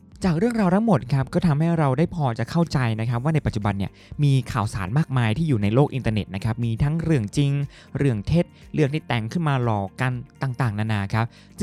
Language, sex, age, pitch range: Thai, male, 20-39, 110-155 Hz